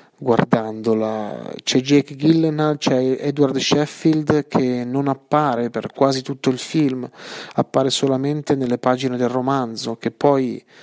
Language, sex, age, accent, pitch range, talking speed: Italian, male, 30-49, native, 120-140 Hz, 125 wpm